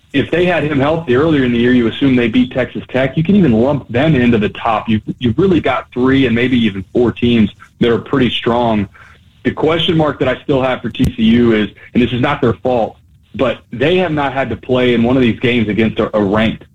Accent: American